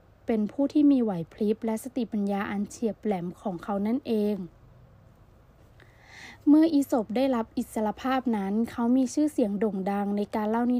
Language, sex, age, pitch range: Thai, female, 20-39, 200-240 Hz